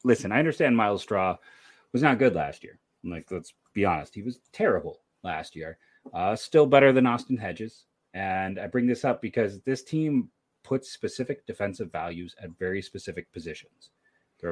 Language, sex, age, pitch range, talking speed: English, male, 30-49, 100-125 Hz, 180 wpm